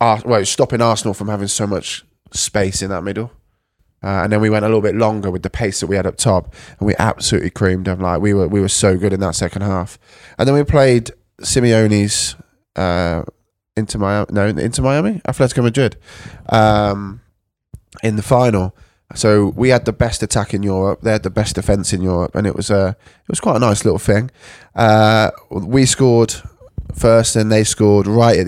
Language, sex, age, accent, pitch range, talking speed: English, male, 20-39, British, 95-110 Hz, 200 wpm